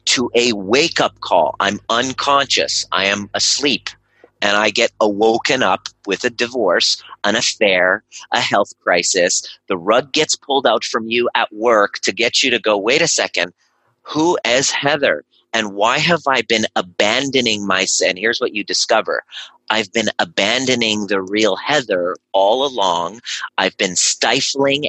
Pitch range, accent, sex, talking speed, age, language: 100-125 Hz, American, male, 155 wpm, 30-49, English